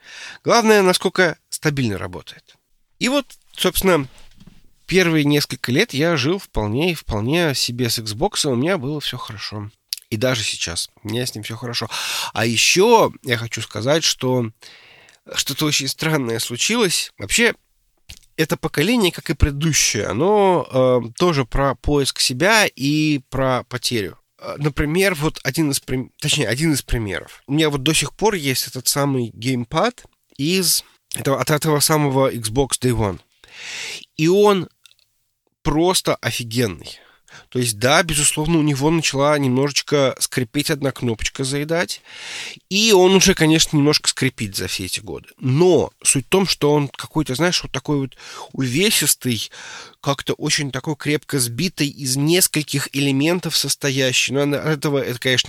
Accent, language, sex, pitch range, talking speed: native, Russian, male, 125-160 Hz, 140 wpm